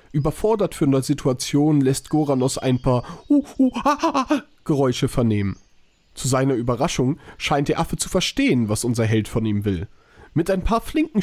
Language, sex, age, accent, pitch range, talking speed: German, male, 40-59, German, 120-155 Hz, 150 wpm